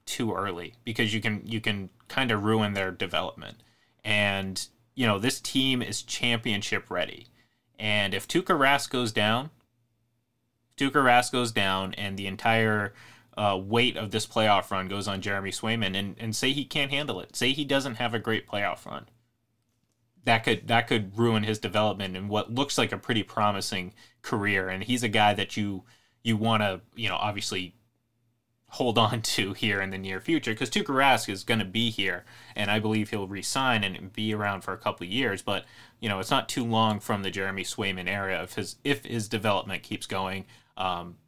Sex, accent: male, American